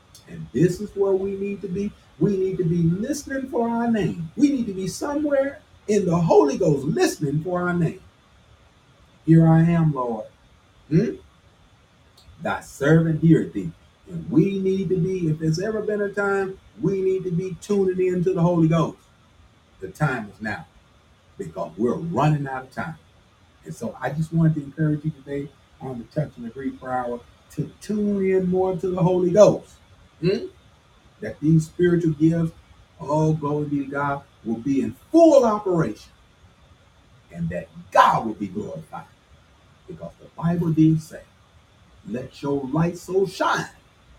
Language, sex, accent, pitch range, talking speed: English, male, American, 120-190 Hz, 170 wpm